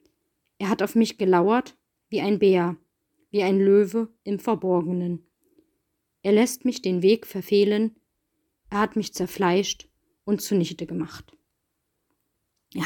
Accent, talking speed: German, 125 wpm